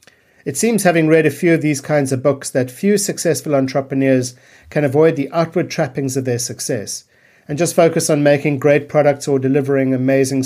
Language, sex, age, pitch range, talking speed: English, male, 50-69, 130-160 Hz, 190 wpm